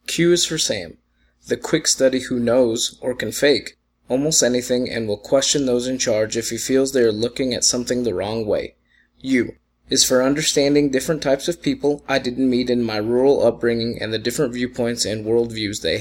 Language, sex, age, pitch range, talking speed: English, male, 20-39, 115-135 Hz, 200 wpm